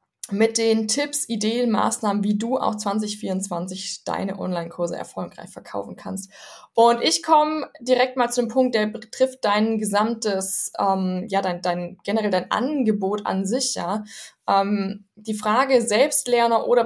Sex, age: female, 20-39